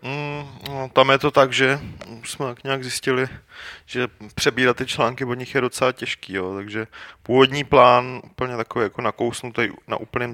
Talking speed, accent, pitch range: 145 wpm, native, 105-125 Hz